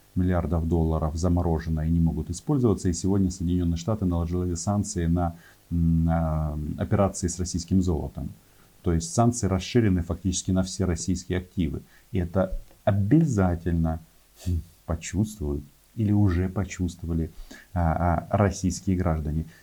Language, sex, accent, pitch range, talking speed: Russian, male, native, 85-100 Hz, 115 wpm